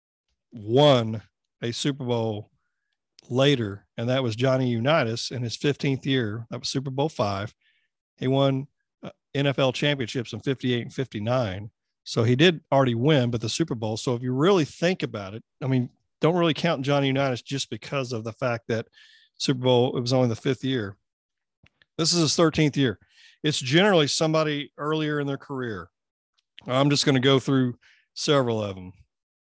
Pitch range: 120-145 Hz